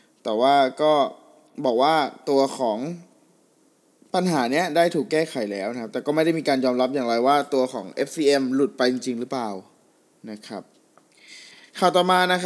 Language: Thai